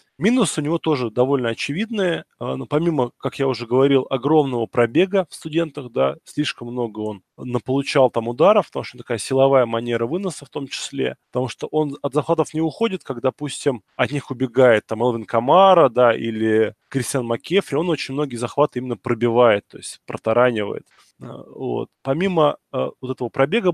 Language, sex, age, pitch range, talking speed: Russian, male, 20-39, 120-150 Hz, 165 wpm